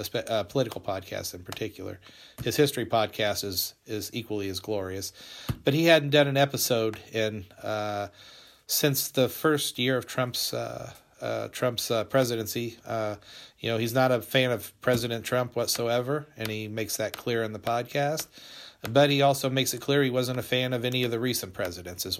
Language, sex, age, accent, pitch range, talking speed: English, male, 40-59, American, 110-130 Hz, 185 wpm